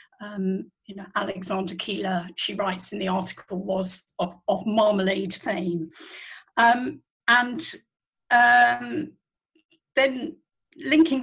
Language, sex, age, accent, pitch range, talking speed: English, female, 50-69, British, 185-225 Hz, 105 wpm